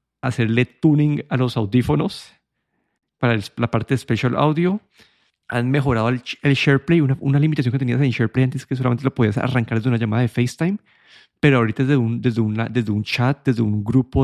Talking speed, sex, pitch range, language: 200 wpm, male, 120-140 Hz, Spanish